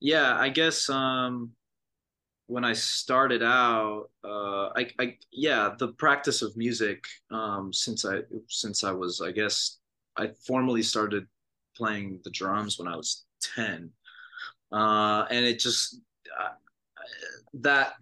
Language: English